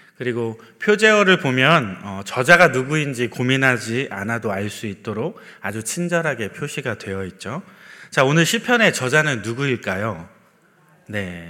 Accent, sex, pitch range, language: native, male, 115-170 Hz, Korean